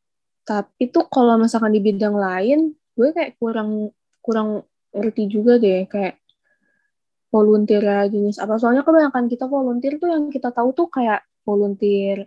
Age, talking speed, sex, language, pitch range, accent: 20-39, 140 wpm, female, Indonesian, 200-240 Hz, native